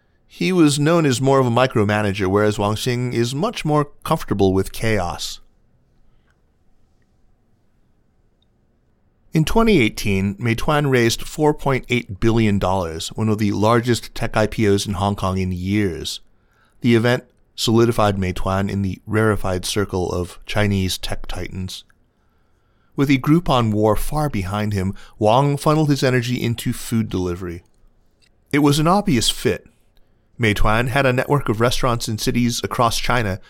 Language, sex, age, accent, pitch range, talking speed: English, male, 30-49, American, 100-130 Hz, 140 wpm